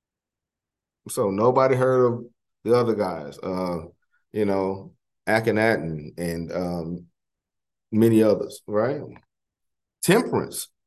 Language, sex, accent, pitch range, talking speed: English, male, American, 105-130 Hz, 100 wpm